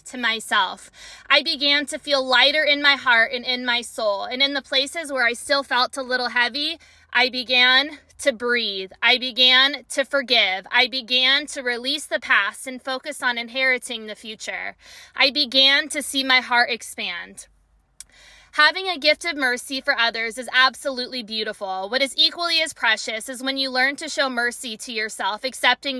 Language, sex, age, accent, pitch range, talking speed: English, female, 20-39, American, 240-285 Hz, 180 wpm